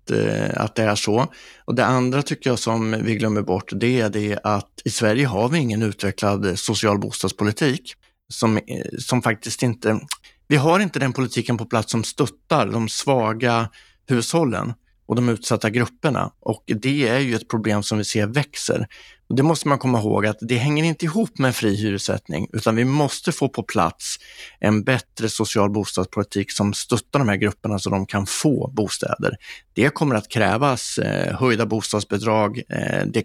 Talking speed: 175 wpm